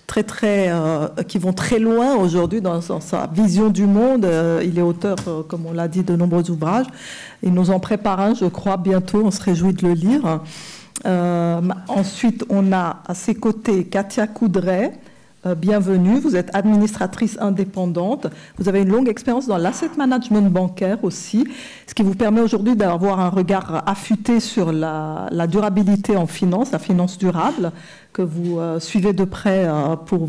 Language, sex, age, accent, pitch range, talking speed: French, female, 50-69, French, 180-215 Hz, 175 wpm